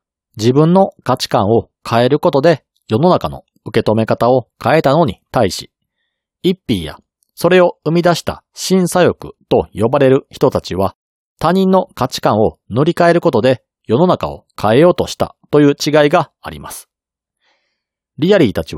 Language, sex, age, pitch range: Japanese, male, 40-59, 130-175 Hz